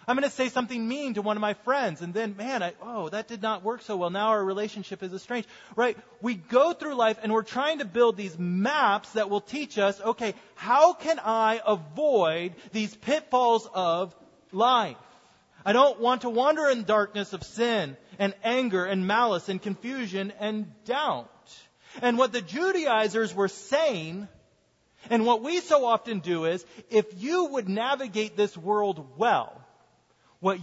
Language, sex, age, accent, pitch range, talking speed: English, male, 30-49, American, 180-245 Hz, 175 wpm